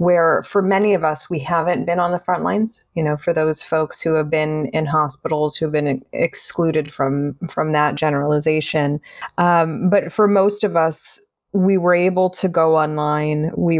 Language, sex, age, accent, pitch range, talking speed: English, female, 20-39, American, 155-185 Hz, 185 wpm